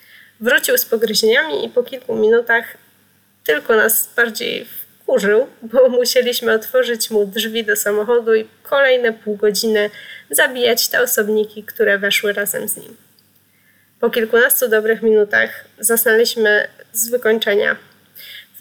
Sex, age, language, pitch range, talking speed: female, 20-39, Polish, 215-255 Hz, 125 wpm